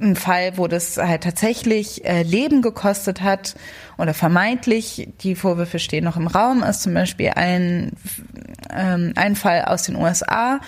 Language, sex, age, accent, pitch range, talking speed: German, female, 20-39, German, 170-200 Hz, 145 wpm